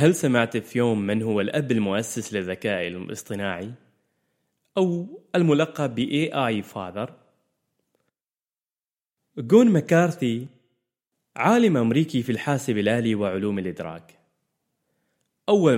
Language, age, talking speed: Arabic, 20-39, 95 wpm